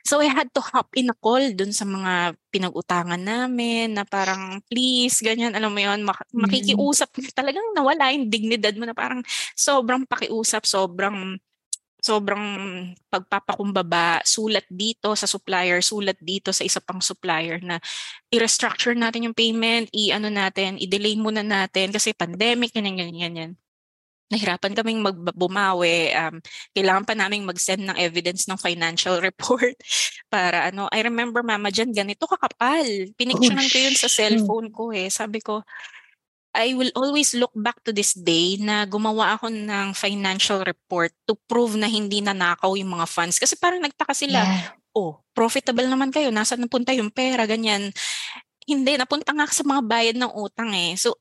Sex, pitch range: female, 190-240 Hz